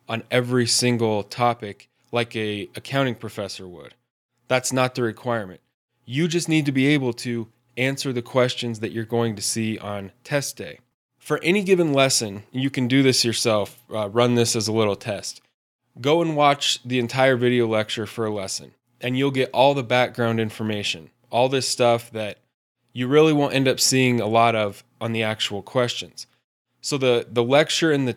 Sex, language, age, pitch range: male, English, 10-29, 115-135 Hz